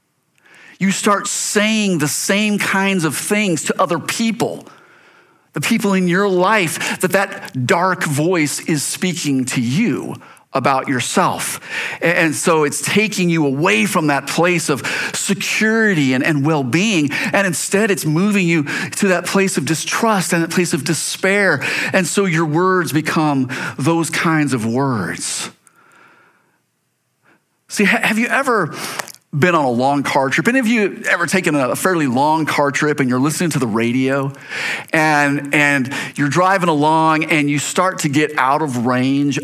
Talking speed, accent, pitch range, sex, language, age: 160 wpm, American, 145-185 Hz, male, English, 40-59